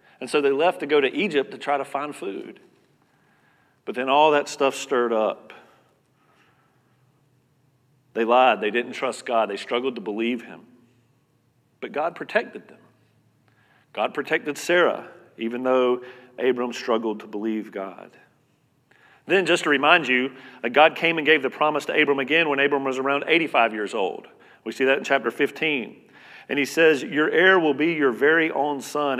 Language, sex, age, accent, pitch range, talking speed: English, male, 40-59, American, 125-145 Hz, 170 wpm